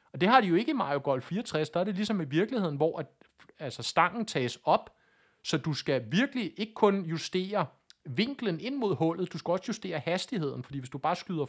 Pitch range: 140-185 Hz